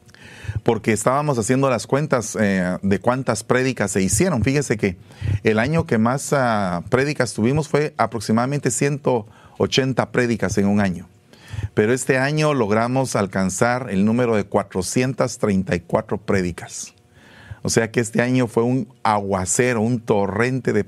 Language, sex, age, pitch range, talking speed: Spanish, male, 40-59, 100-125 Hz, 135 wpm